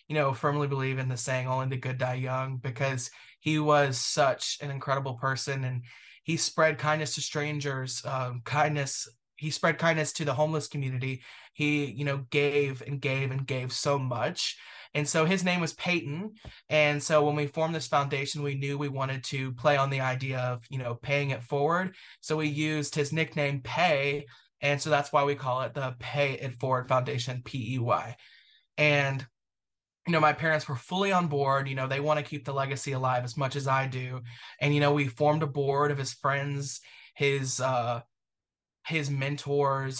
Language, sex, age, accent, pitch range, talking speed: English, male, 20-39, American, 130-150 Hz, 195 wpm